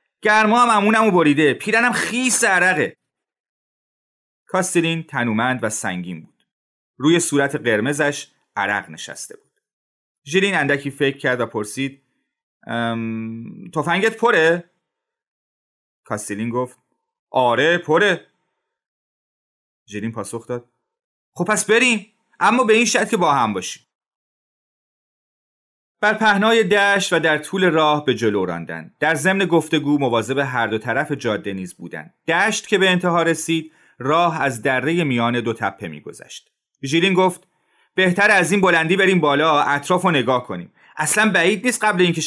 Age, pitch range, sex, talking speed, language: 30-49, 120-195 Hz, male, 130 wpm, Persian